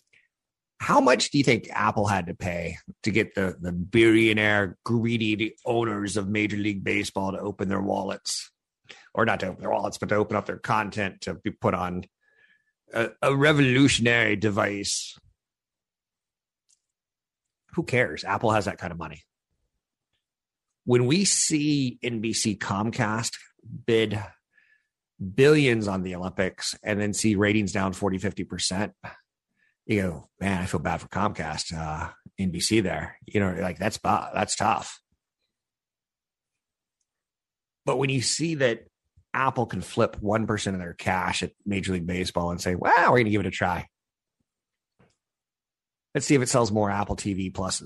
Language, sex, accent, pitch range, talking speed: English, male, American, 95-115 Hz, 150 wpm